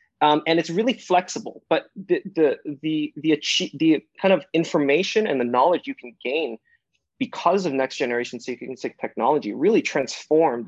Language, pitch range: English, 125-175 Hz